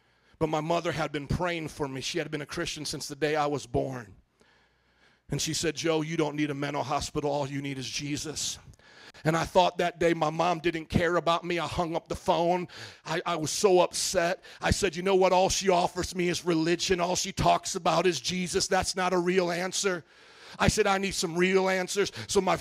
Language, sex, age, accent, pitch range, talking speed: English, male, 40-59, American, 170-220 Hz, 230 wpm